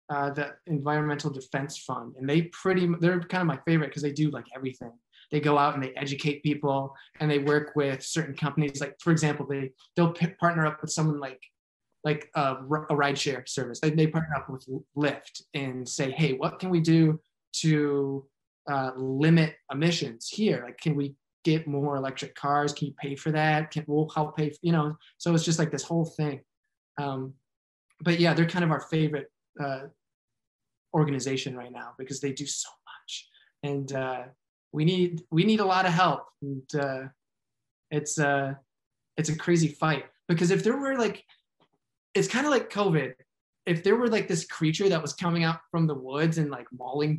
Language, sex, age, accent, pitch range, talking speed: English, male, 20-39, American, 140-165 Hz, 195 wpm